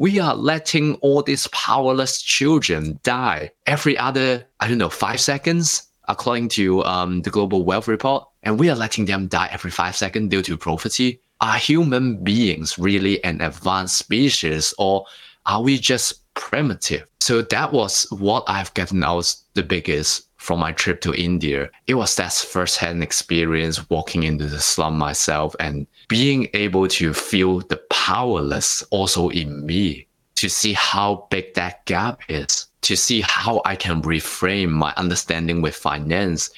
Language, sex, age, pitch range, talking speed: English, male, 20-39, 85-115 Hz, 160 wpm